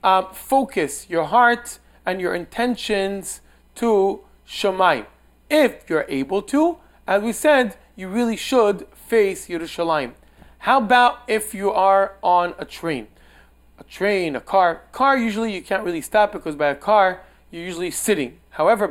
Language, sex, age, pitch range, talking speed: English, male, 30-49, 170-225 Hz, 150 wpm